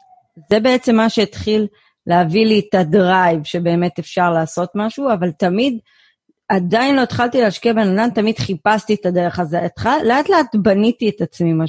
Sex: female